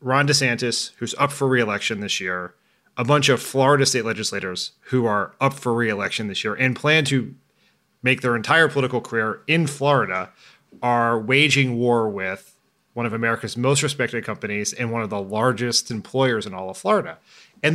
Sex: male